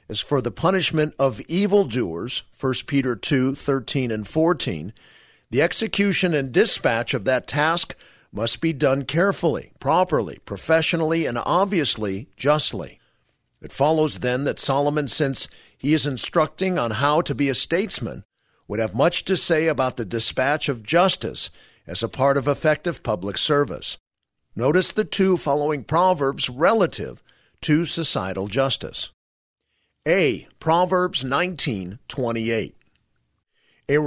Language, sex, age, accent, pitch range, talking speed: English, male, 50-69, American, 130-165 Hz, 125 wpm